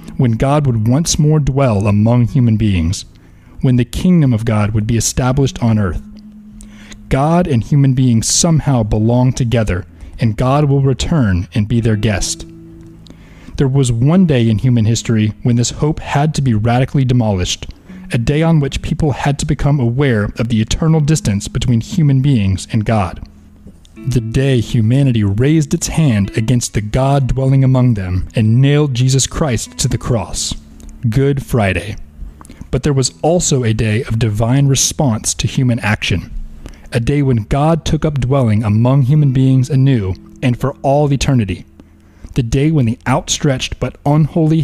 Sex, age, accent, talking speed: male, 30-49, American, 165 wpm